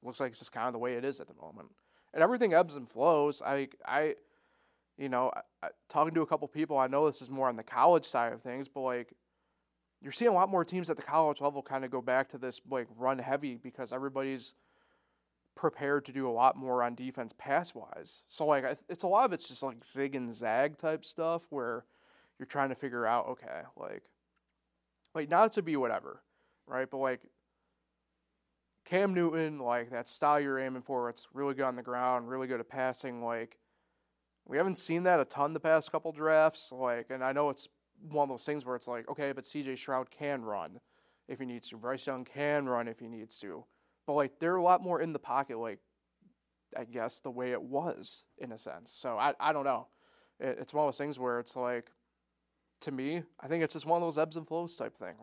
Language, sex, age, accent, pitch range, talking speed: English, male, 20-39, American, 125-150 Hz, 230 wpm